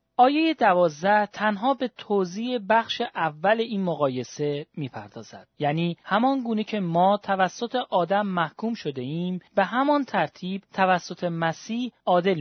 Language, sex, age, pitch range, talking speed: Persian, male, 40-59, 160-225 Hz, 125 wpm